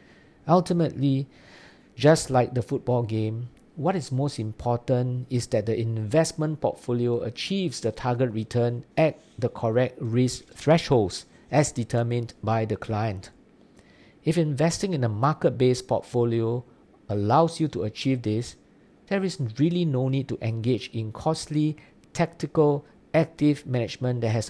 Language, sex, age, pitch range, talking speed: English, male, 50-69, 115-145 Hz, 130 wpm